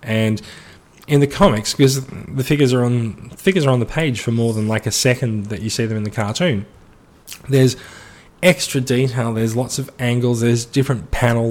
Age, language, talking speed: 20-39, English, 195 wpm